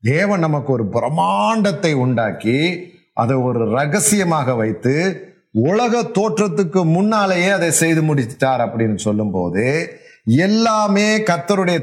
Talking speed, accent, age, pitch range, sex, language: 95 wpm, native, 30-49, 105-150 Hz, male, Tamil